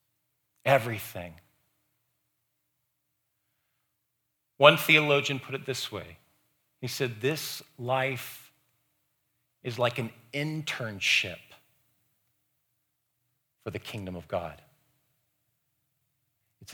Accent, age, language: American, 40-59, English